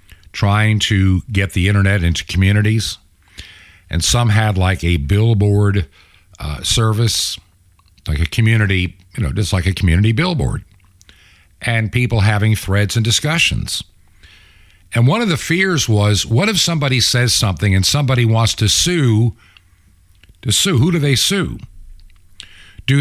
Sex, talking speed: male, 140 wpm